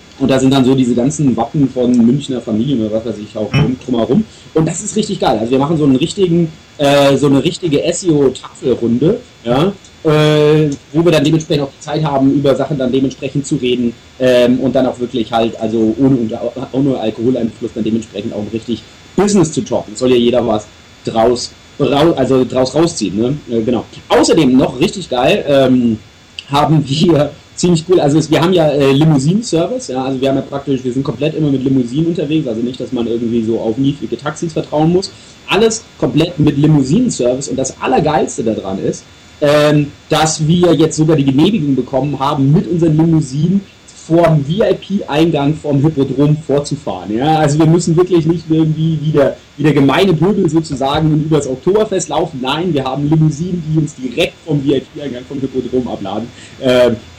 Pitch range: 125-160 Hz